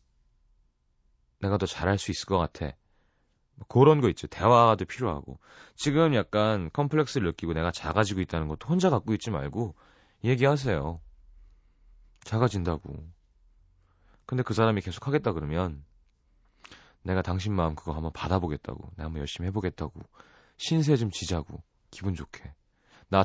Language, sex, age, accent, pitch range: Korean, male, 30-49, native, 75-110 Hz